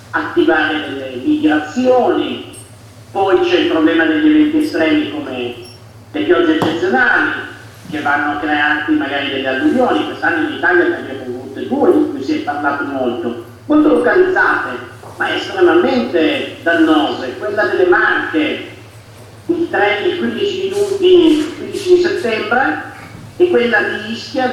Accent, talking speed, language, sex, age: native, 130 wpm, Italian, male, 50-69